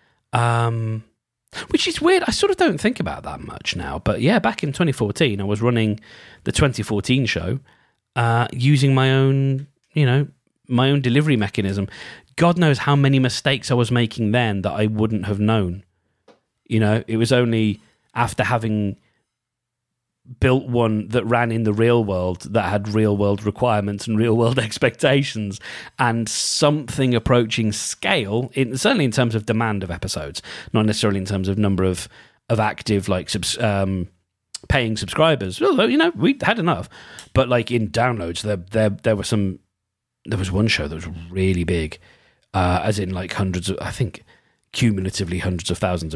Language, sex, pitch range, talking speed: English, male, 100-125 Hz, 170 wpm